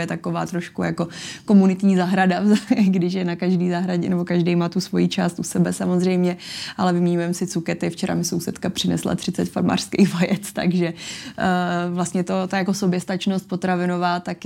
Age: 20-39